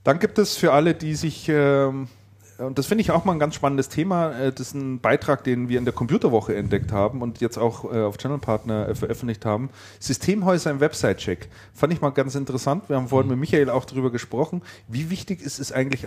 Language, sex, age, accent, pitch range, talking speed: German, male, 30-49, German, 110-140 Hz, 215 wpm